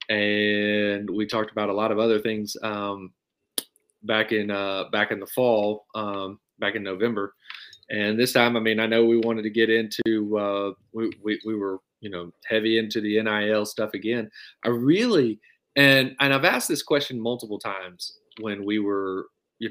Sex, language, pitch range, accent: male, English, 100-120 Hz, American